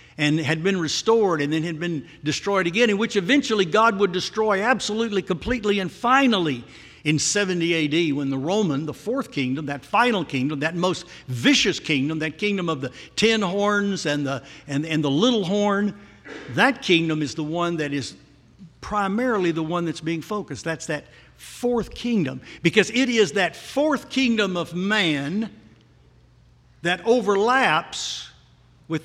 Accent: American